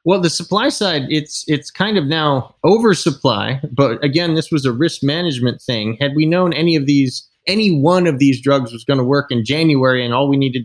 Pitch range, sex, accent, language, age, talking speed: 125-155 Hz, male, American, English, 20-39, 220 wpm